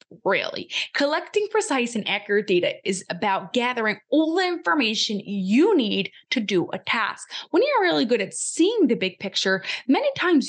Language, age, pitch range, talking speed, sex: English, 20-39, 205-305 Hz, 165 wpm, female